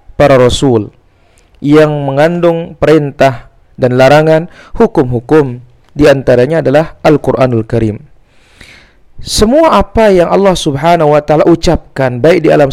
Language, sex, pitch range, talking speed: Indonesian, male, 125-180 Hz, 115 wpm